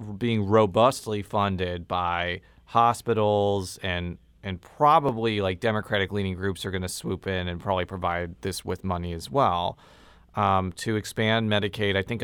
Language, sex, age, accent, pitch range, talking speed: English, male, 30-49, American, 95-120 Hz, 145 wpm